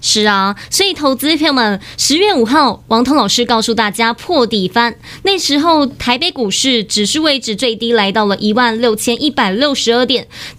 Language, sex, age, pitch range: Chinese, female, 20-39, 230-305 Hz